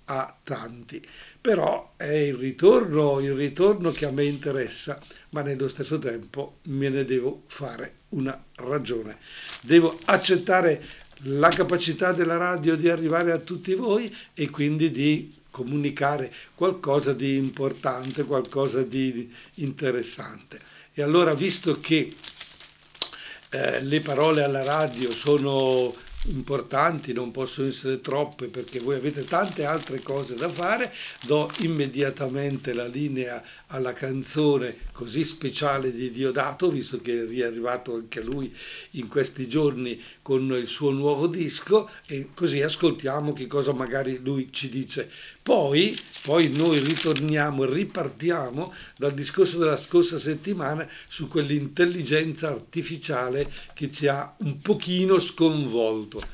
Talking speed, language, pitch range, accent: 125 wpm, Italian, 130-165 Hz, native